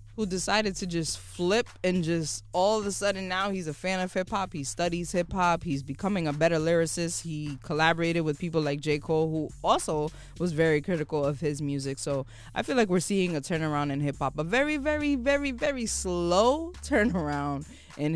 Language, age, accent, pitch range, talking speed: English, 20-39, American, 140-190 Hz, 190 wpm